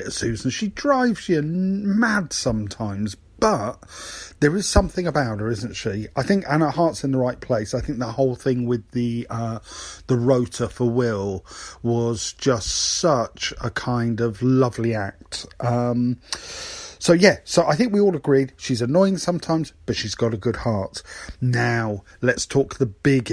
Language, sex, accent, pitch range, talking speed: English, male, British, 115-175 Hz, 170 wpm